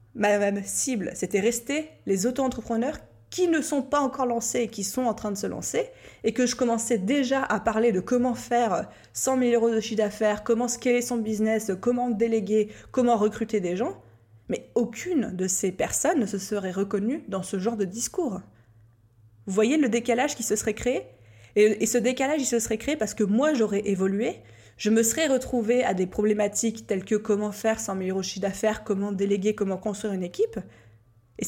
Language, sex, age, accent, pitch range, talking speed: French, female, 20-39, French, 195-245 Hz, 195 wpm